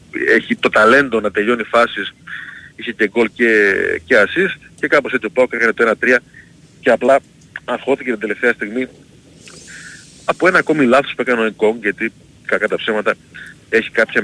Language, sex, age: Greek, male, 30-49